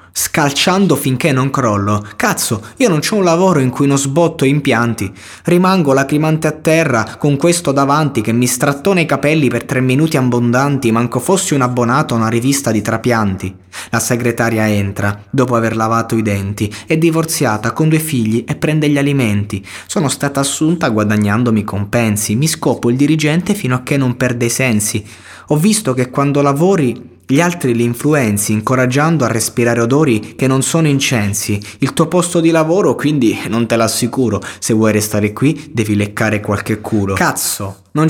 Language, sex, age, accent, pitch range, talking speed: Italian, male, 20-39, native, 110-145 Hz, 170 wpm